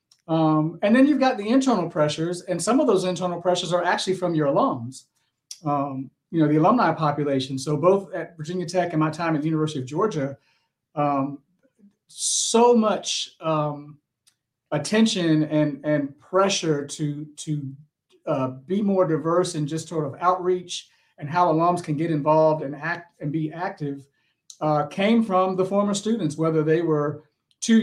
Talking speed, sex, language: 170 wpm, male, English